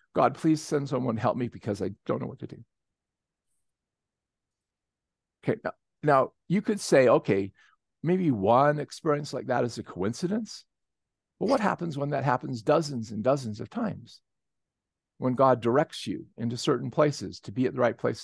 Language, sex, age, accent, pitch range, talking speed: English, male, 50-69, American, 115-160 Hz, 175 wpm